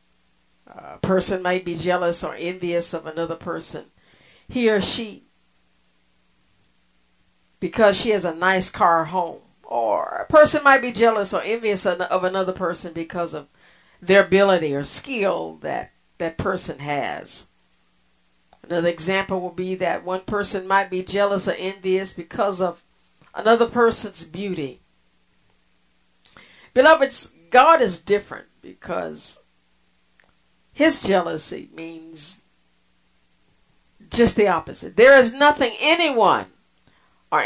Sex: female